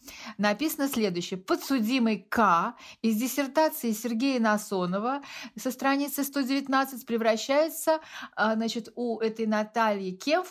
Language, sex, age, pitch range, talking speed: Russian, female, 50-69, 220-280 Hz, 95 wpm